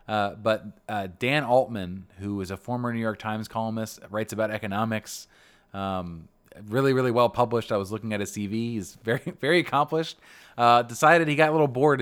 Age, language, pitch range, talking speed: 20-39, English, 95-115 Hz, 190 wpm